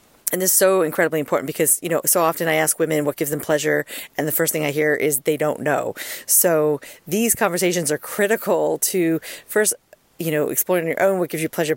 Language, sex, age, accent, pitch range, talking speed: English, female, 40-59, American, 150-175 Hz, 225 wpm